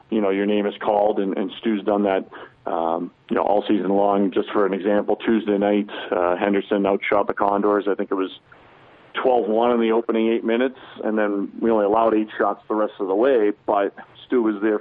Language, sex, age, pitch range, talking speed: English, male, 40-59, 100-110 Hz, 225 wpm